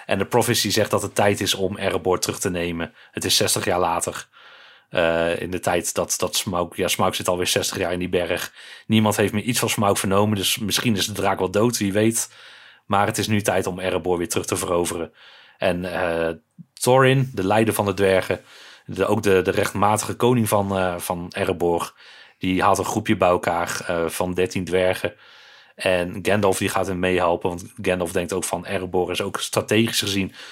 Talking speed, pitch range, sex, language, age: 205 wpm, 90-110 Hz, male, Dutch, 30-49